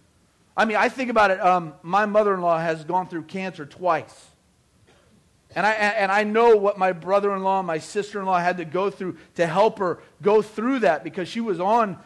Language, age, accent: English, 40-59, American